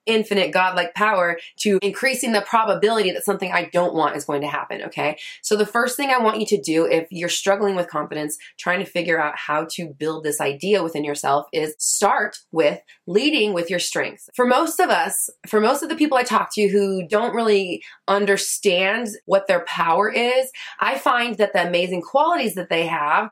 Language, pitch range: English, 185-255 Hz